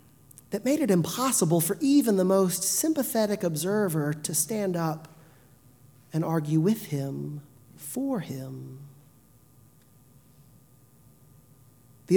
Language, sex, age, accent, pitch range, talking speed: English, male, 40-59, American, 150-205 Hz, 100 wpm